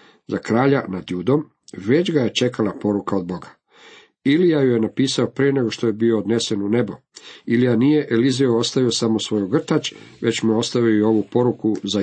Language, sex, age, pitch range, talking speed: Croatian, male, 50-69, 105-130 Hz, 185 wpm